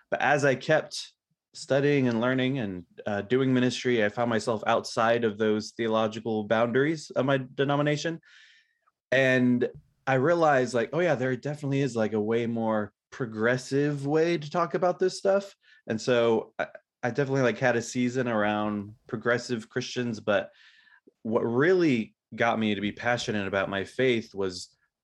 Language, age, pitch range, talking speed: English, 20-39, 105-135 Hz, 160 wpm